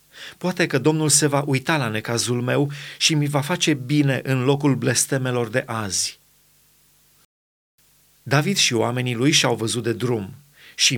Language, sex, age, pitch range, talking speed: Romanian, male, 30-49, 120-150 Hz, 155 wpm